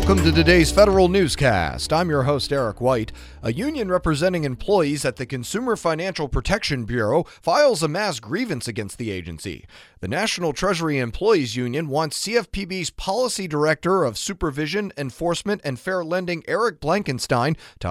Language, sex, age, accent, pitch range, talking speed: English, male, 40-59, American, 130-175 Hz, 150 wpm